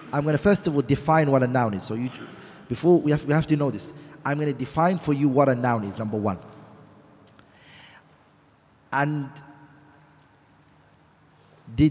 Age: 30-49